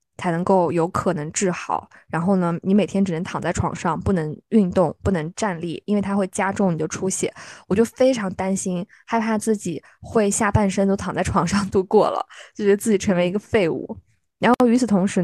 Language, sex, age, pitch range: Chinese, female, 20-39, 180-220 Hz